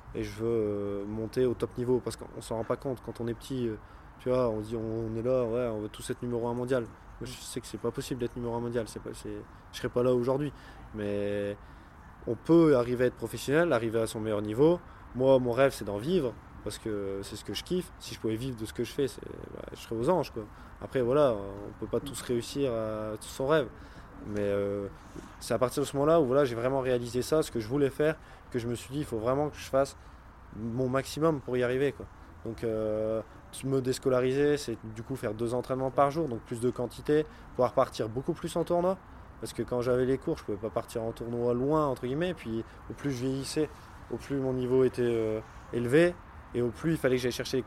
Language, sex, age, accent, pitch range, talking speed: French, male, 20-39, French, 110-130 Hz, 255 wpm